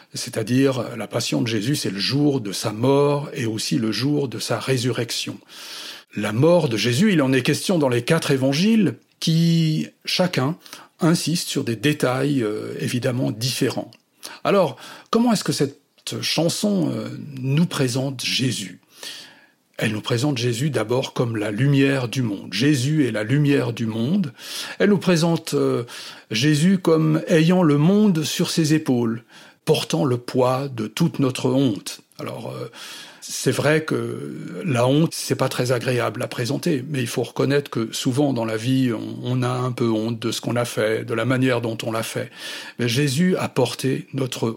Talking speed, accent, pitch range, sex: 170 wpm, French, 120-155 Hz, male